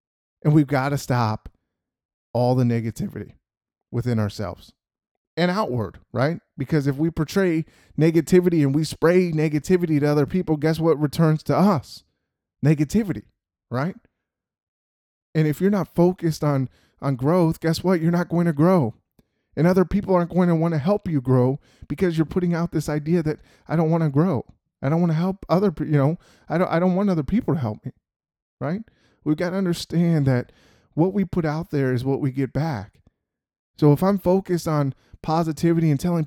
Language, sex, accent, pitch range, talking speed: English, male, American, 130-170 Hz, 185 wpm